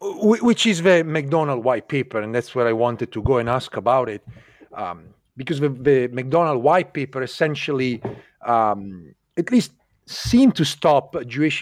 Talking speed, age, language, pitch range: 165 wpm, 40-59, English, 130-175 Hz